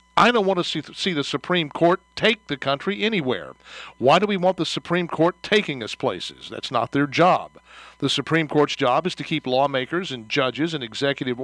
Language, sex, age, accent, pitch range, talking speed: English, male, 50-69, American, 130-170 Hz, 200 wpm